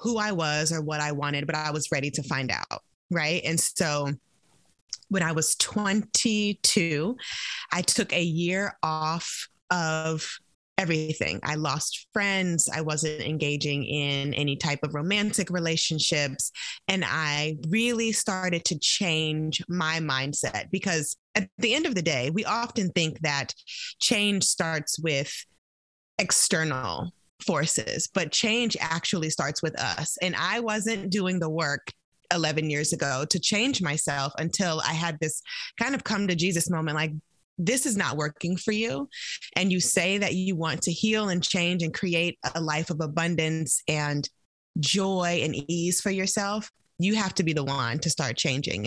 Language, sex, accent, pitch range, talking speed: English, female, American, 150-195 Hz, 160 wpm